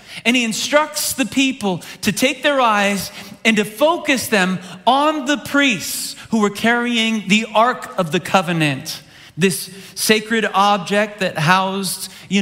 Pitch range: 155-215 Hz